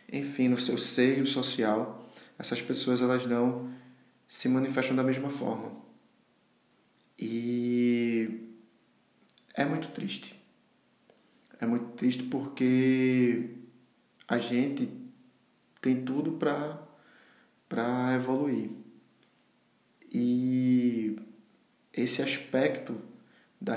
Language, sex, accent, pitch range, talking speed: Portuguese, male, Brazilian, 115-130 Hz, 85 wpm